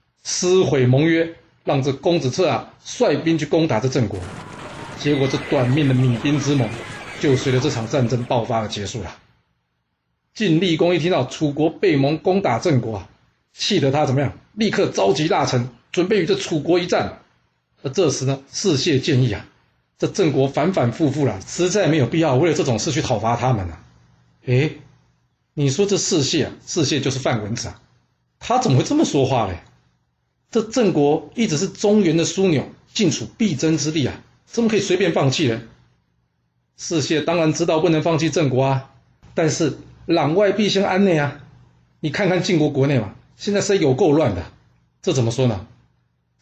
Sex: male